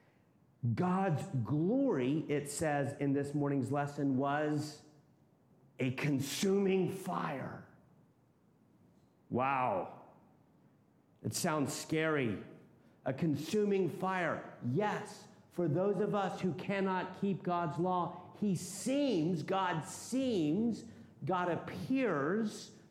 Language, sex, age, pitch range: English, male, 50-69, 165-205 Hz